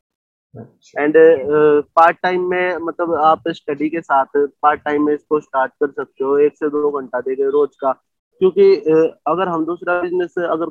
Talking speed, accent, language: 170 wpm, native, Hindi